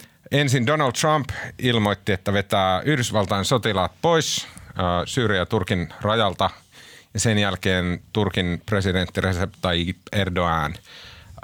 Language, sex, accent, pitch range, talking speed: Finnish, male, native, 95-120 Hz, 95 wpm